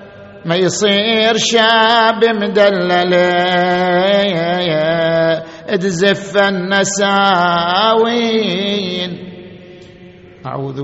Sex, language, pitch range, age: male, Arabic, 135-160 Hz, 50-69